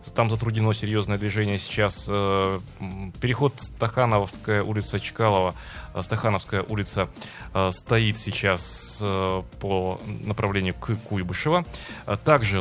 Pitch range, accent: 95-115 Hz, native